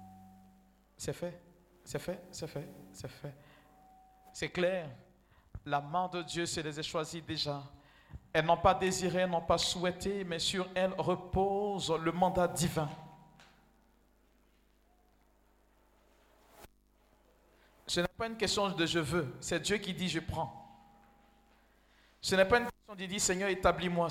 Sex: male